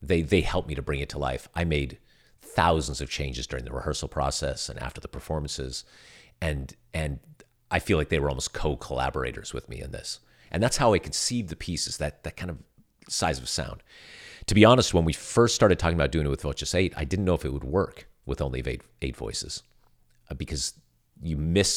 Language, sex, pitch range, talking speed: English, male, 70-95 Hz, 220 wpm